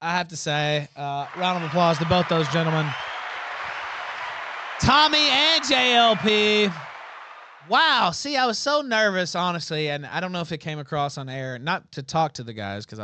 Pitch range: 120-160 Hz